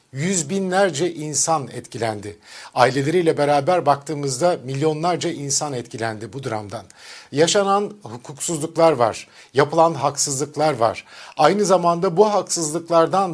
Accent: native